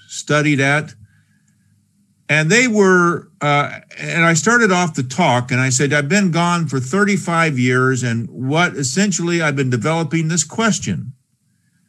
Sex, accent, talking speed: male, American, 145 wpm